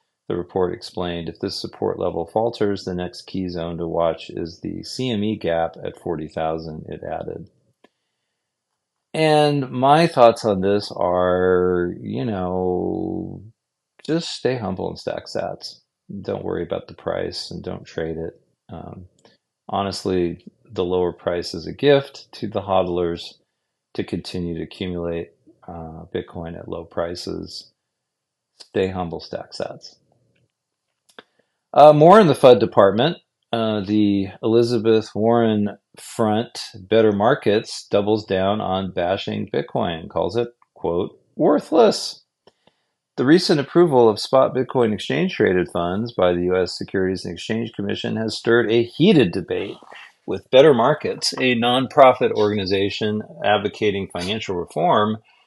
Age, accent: 40-59, American